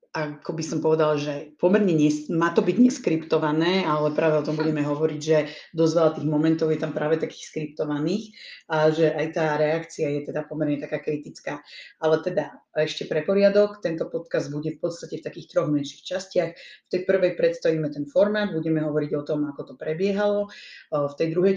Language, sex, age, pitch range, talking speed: Slovak, female, 30-49, 150-165 Hz, 185 wpm